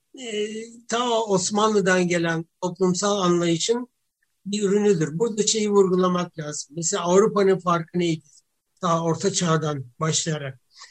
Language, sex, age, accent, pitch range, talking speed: Turkish, male, 60-79, native, 170-205 Hz, 110 wpm